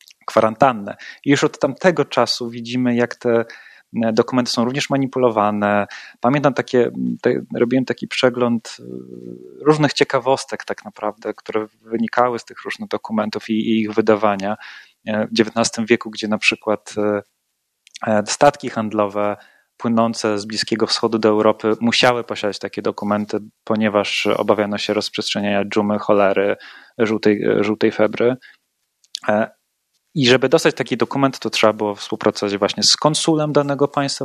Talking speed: 130 wpm